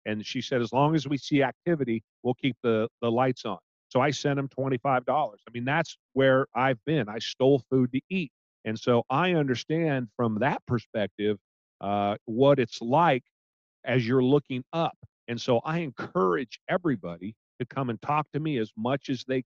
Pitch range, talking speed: 115-145 Hz, 190 wpm